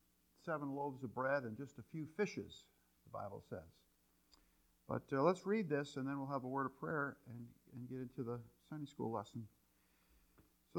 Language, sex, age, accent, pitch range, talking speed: English, male, 50-69, American, 130-180 Hz, 190 wpm